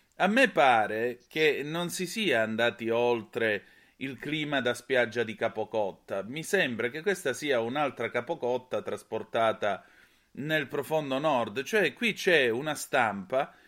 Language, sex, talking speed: Italian, male, 135 wpm